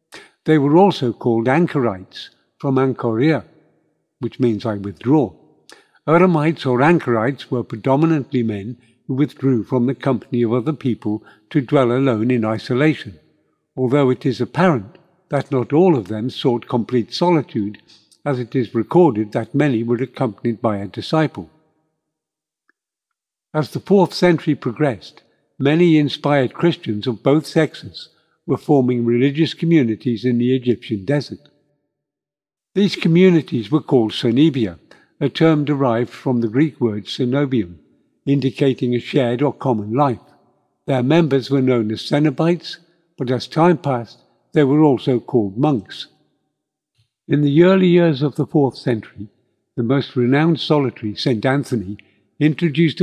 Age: 60-79